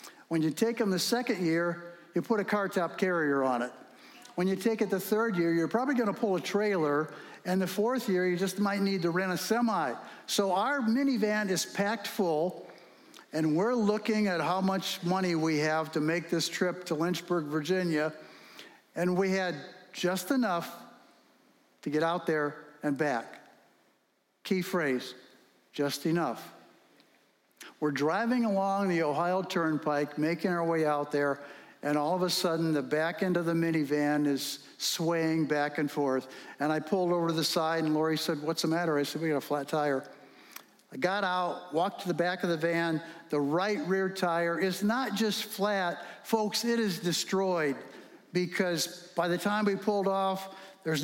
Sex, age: male, 60-79